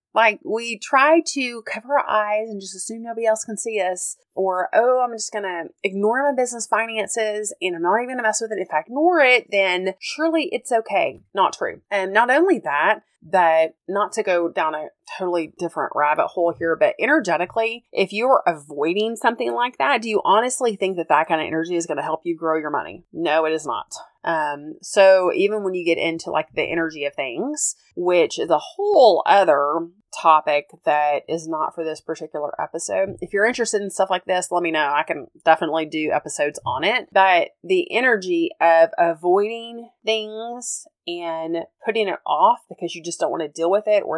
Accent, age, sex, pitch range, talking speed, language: American, 30-49, female, 165-225 Hz, 205 wpm, English